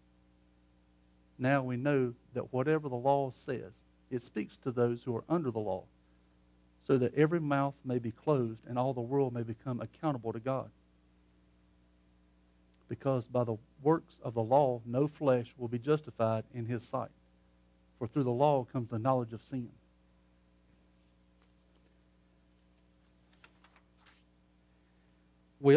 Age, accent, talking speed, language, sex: 50-69, American, 135 wpm, English, male